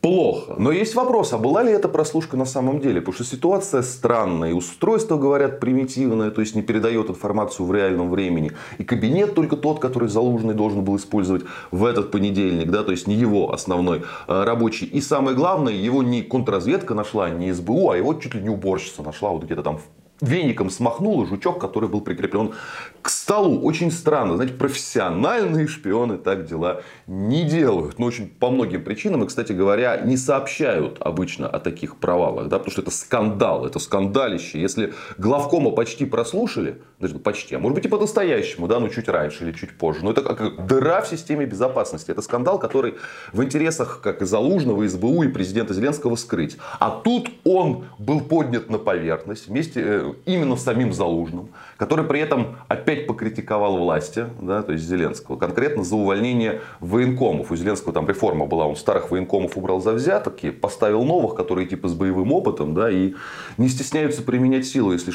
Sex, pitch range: male, 95-135 Hz